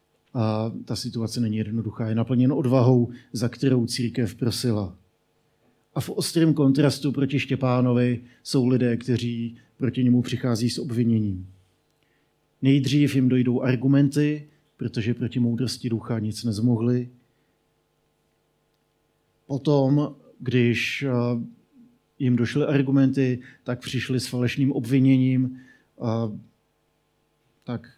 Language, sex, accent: Czech, male, native